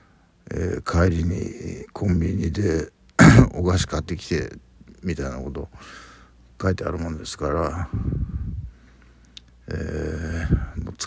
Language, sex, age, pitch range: Japanese, male, 60-79, 70-90 Hz